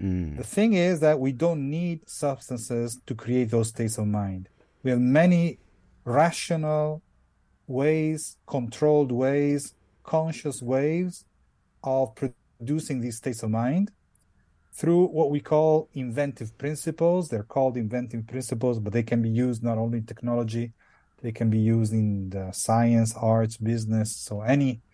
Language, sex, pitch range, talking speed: English, male, 115-150 Hz, 140 wpm